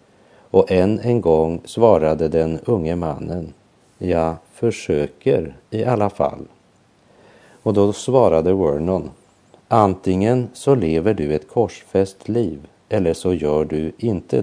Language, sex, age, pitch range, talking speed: Swedish, male, 50-69, 80-105 Hz, 120 wpm